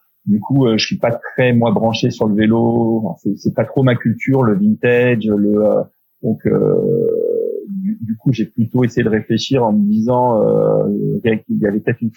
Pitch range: 110-140 Hz